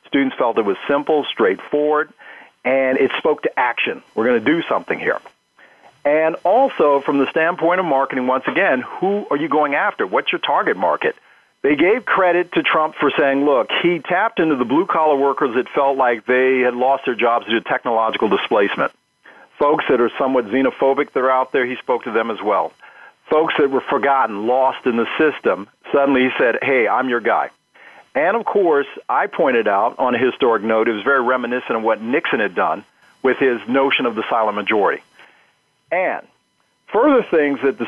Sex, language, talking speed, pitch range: male, English, 195 wpm, 125-150 Hz